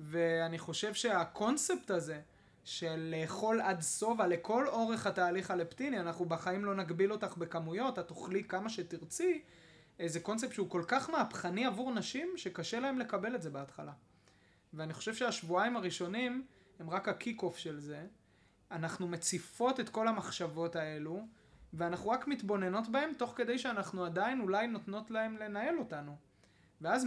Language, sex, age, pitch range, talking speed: Hebrew, male, 20-39, 165-225 Hz, 145 wpm